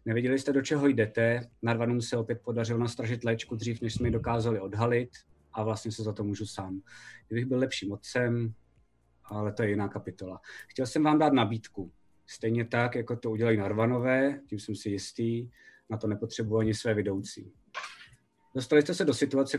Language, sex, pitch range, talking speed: Czech, male, 110-125 Hz, 180 wpm